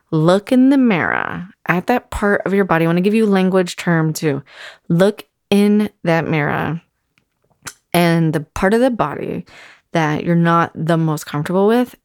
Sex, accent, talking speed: female, American, 175 wpm